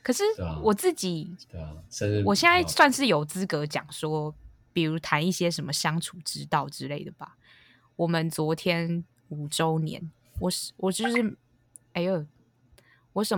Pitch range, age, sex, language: 145-190 Hz, 20-39, female, Chinese